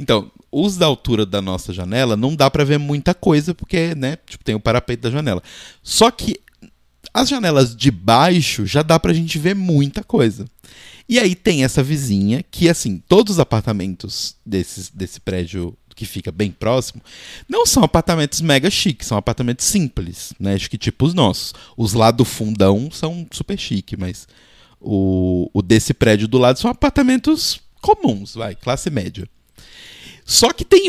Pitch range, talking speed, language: 105-155 Hz, 165 wpm, Portuguese